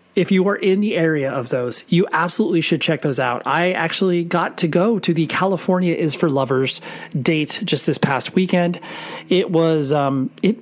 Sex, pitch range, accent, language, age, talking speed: male, 140-185 Hz, American, English, 30-49, 190 wpm